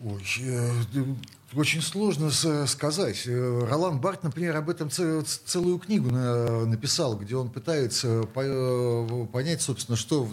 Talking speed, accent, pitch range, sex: 105 wpm, native, 110-130 Hz, male